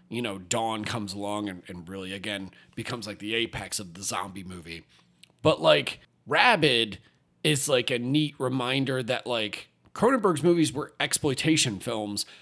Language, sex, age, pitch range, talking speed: English, male, 30-49, 115-155 Hz, 155 wpm